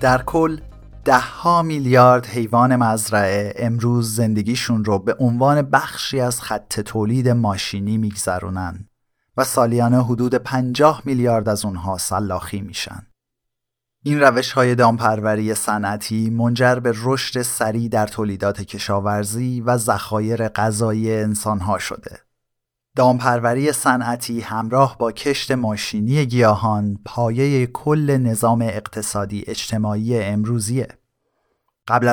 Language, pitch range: Persian, 105-125 Hz